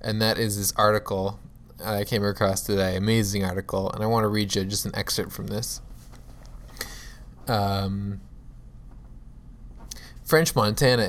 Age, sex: 20-39, male